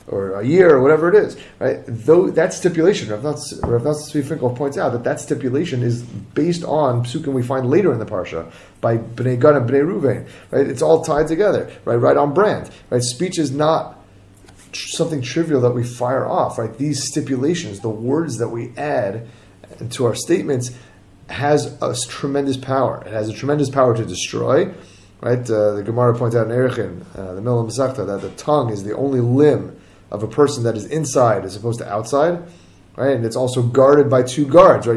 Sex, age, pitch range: male, 30-49, 110-145 Hz